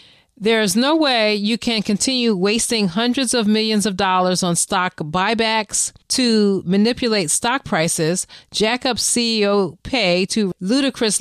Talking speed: 140 wpm